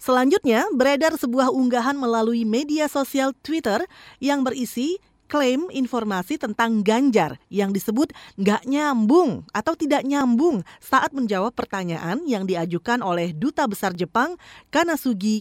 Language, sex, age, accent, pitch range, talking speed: Indonesian, female, 30-49, native, 190-275 Hz, 120 wpm